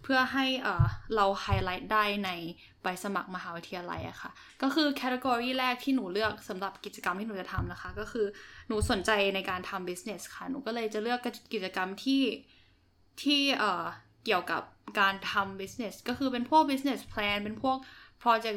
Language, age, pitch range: Thai, 10-29, 195-245 Hz